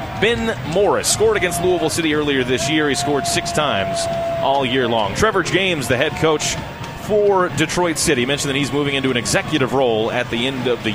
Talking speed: 205 wpm